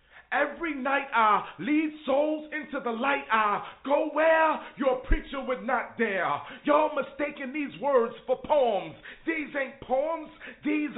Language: English